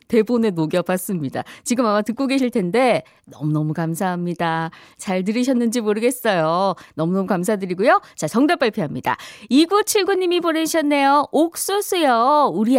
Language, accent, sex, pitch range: Korean, native, female, 175-285 Hz